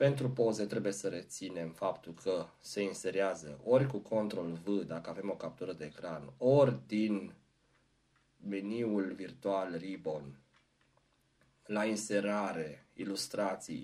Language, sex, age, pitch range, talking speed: Romanian, male, 30-49, 100-130 Hz, 115 wpm